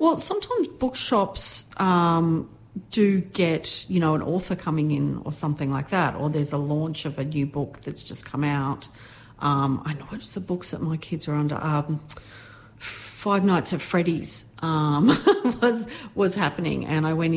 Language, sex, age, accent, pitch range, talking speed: English, female, 40-59, Australian, 140-160 Hz, 175 wpm